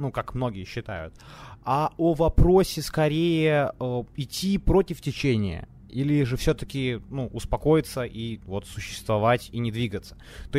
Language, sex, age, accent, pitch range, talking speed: Ukrainian, male, 20-39, native, 115-145 Hz, 135 wpm